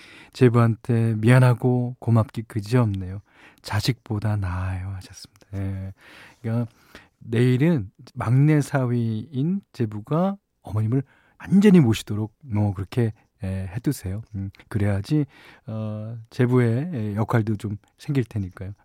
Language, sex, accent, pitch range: Korean, male, native, 105-140 Hz